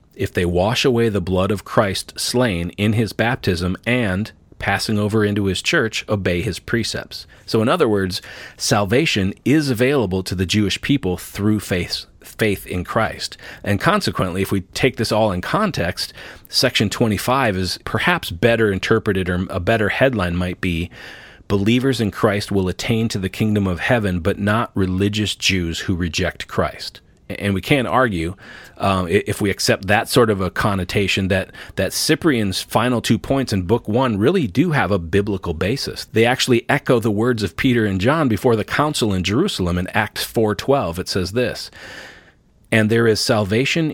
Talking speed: 175 wpm